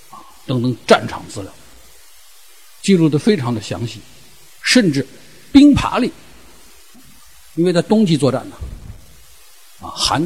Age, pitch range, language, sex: 50-69, 125-175 Hz, Chinese, male